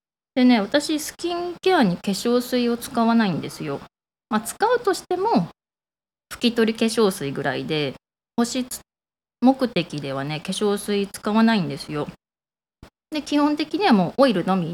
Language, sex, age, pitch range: Japanese, female, 20-39, 170-265 Hz